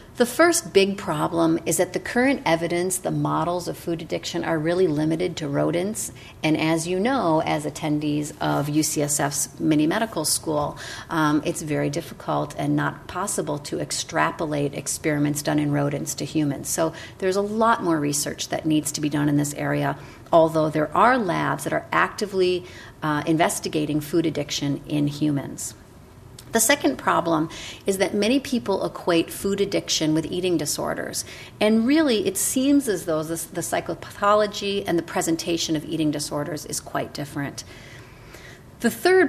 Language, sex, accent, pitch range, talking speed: English, female, American, 150-190 Hz, 160 wpm